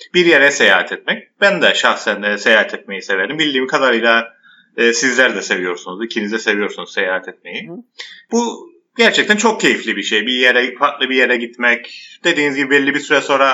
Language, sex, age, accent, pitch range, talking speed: Turkish, male, 30-49, native, 125-180 Hz, 175 wpm